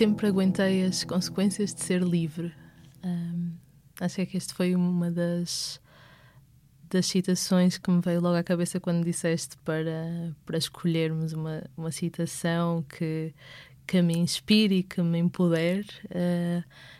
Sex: female